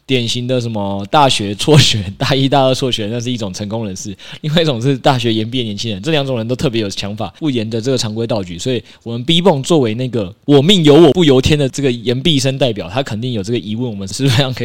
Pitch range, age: 110-140 Hz, 20-39